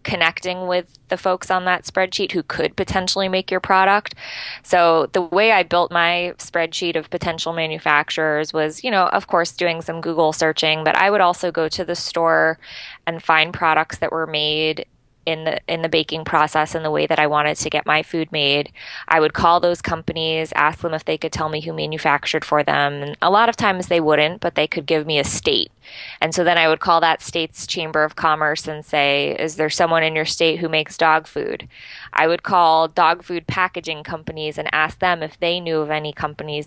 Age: 20-39